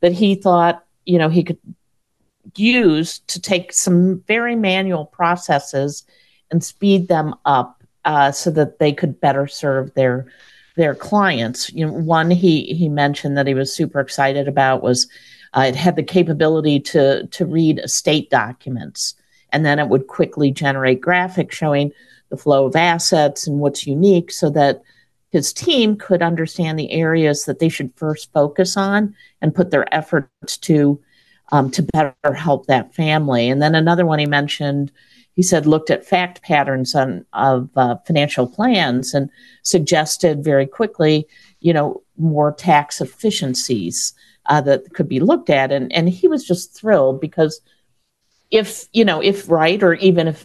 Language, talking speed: English, 165 wpm